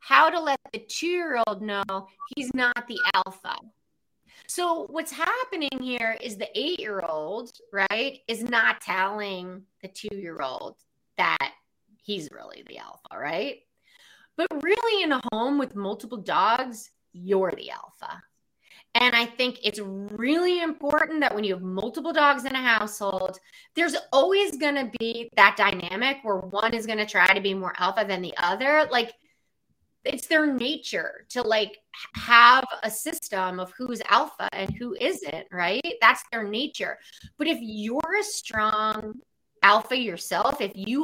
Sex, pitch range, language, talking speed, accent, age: female, 205-295 Hz, English, 150 wpm, American, 30-49